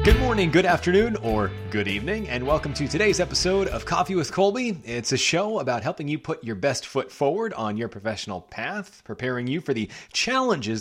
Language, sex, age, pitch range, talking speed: English, male, 30-49, 120-180 Hz, 200 wpm